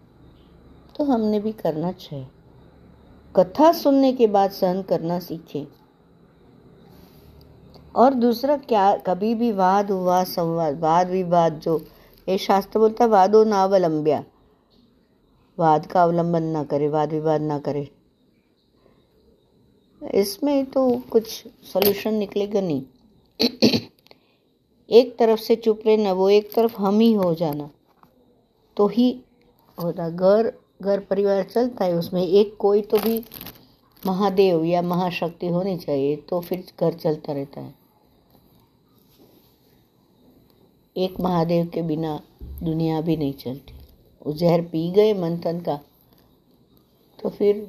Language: Hindi